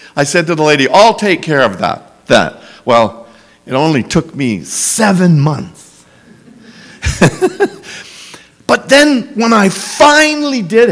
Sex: male